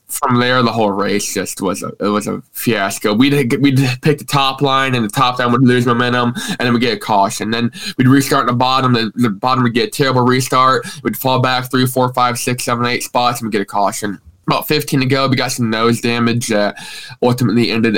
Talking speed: 240 wpm